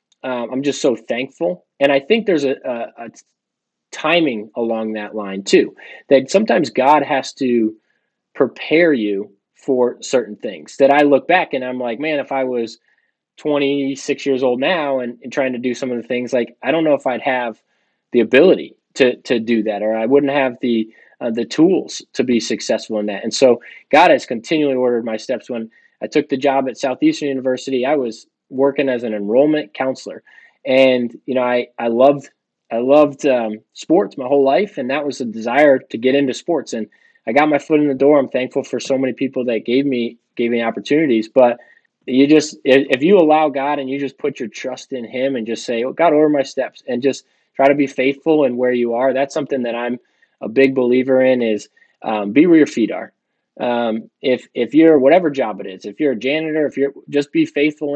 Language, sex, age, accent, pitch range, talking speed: English, male, 20-39, American, 120-140 Hz, 215 wpm